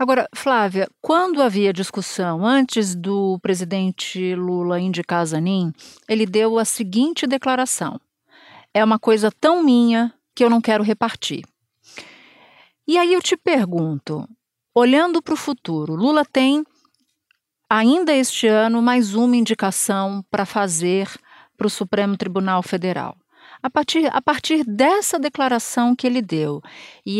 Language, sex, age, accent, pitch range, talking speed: Portuguese, female, 50-69, Brazilian, 185-250 Hz, 130 wpm